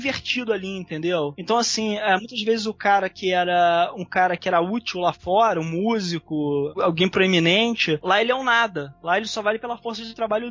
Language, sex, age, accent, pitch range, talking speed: Portuguese, male, 20-39, Brazilian, 180-230 Hz, 200 wpm